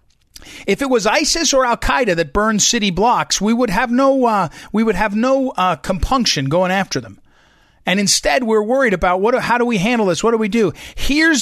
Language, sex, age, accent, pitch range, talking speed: English, male, 40-59, American, 185-260 Hz, 215 wpm